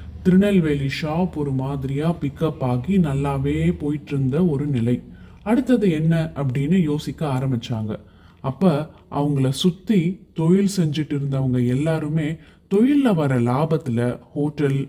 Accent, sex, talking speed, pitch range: native, male, 110 wpm, 135-180 Hz